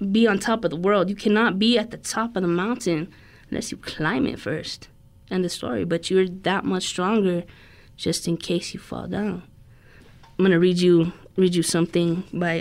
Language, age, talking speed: English, 20-39, 200 wpm